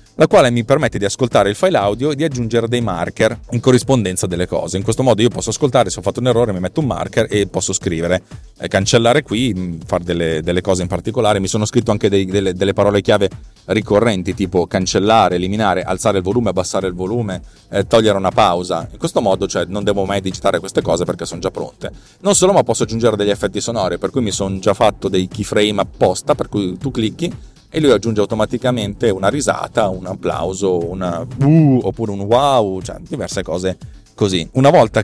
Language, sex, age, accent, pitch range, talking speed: Italian, male, 30-49, native, 95-120 Hz, 210 wpm